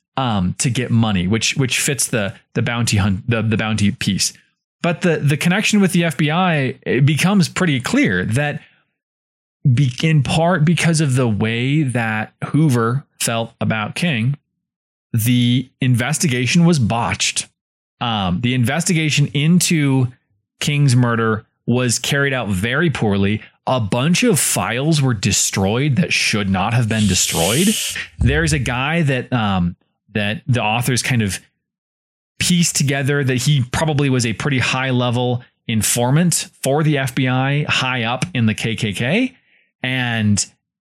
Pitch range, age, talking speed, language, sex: 115-150 Hz, 20-39, 140 wpm, English, male